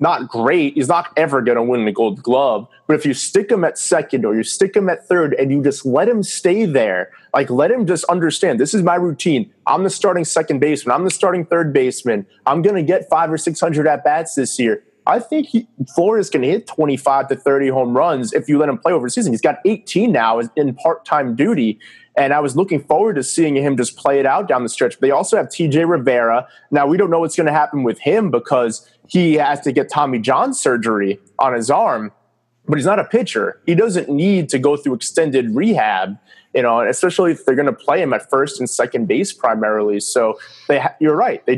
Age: 30-49